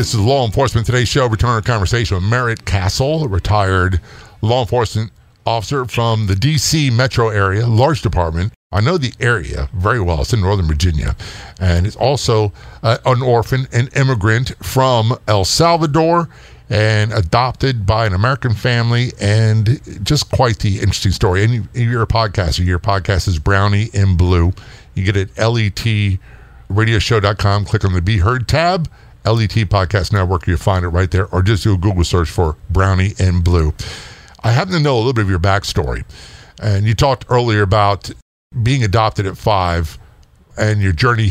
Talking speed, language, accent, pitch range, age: 175 wpm, English, American, 95-120 Hz, 50-69